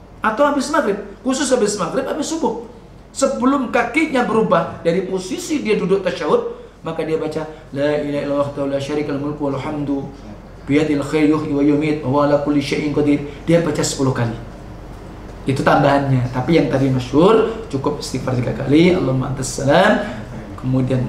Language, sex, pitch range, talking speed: Indonesian, male, 140-230 Hz, 110 wpm